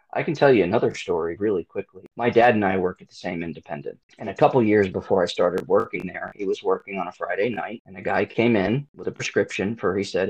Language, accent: English, American